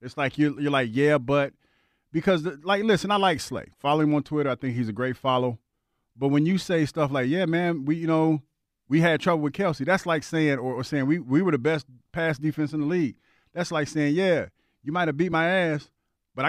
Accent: American